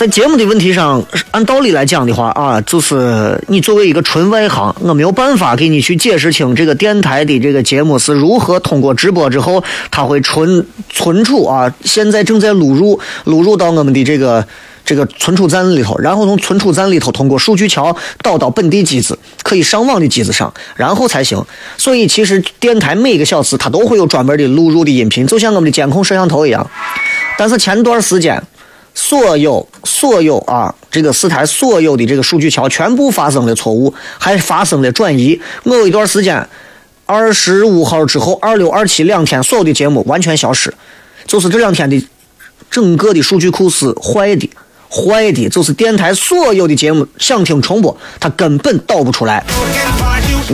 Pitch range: 145-210 Hz